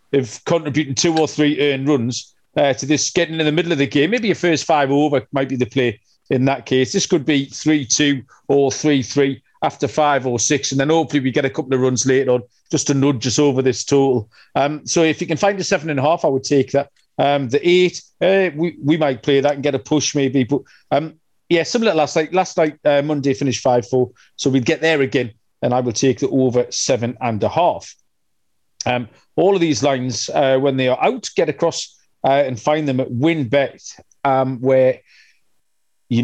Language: English